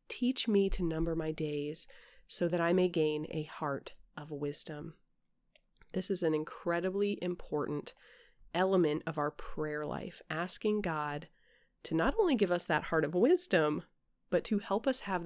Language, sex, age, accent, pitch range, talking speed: English, female, 30-49, American, 160-215 Hz, 160 wpm